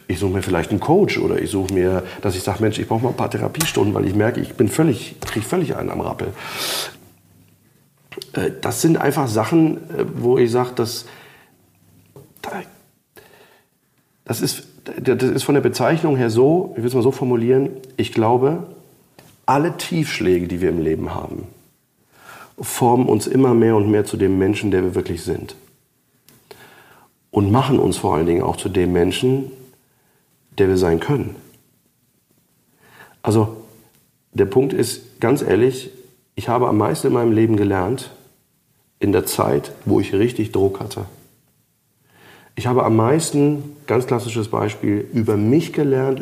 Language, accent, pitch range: German, German, 100-130 Hz